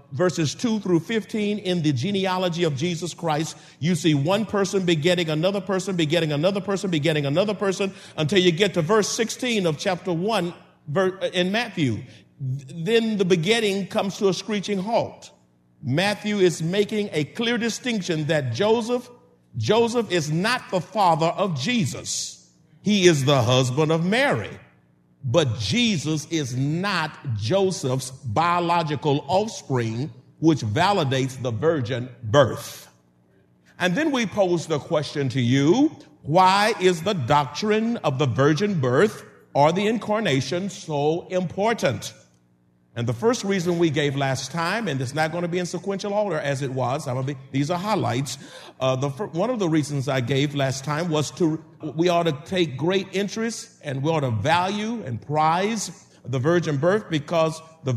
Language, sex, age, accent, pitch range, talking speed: English, male, 50-69, American, 140-200 Hz, 160 wpm